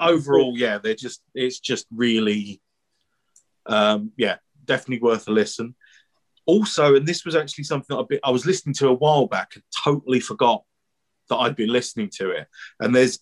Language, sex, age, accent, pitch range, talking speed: English, male, 40-59, British, 110-135 Hz, 170 wpm